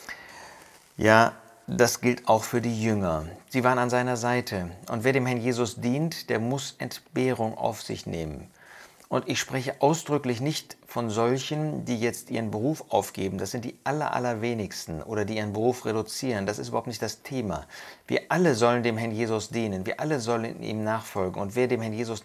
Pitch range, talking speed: 100-120 Hz, 185 wpm